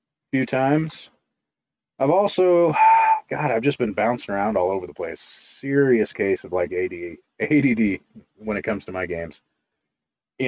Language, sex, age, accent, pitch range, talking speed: English, male, 30-49, American, 75-125 Hz, 145 wpm